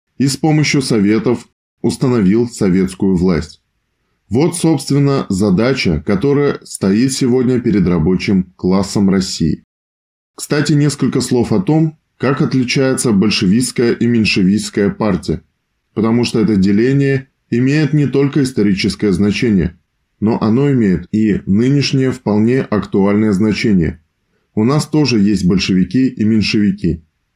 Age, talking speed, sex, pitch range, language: 20-39, 115 wpm, male, 105-135 Hz, Russian